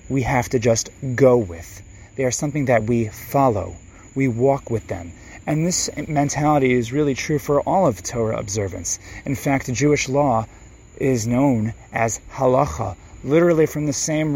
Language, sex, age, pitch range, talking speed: English, male, 30-49, 110-140 Hz, 165 wpm